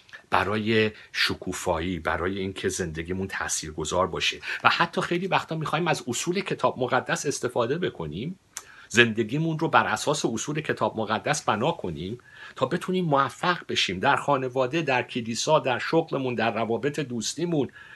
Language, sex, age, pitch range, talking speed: Persian, male, 50-69, 90-145 Hz, 135 wpm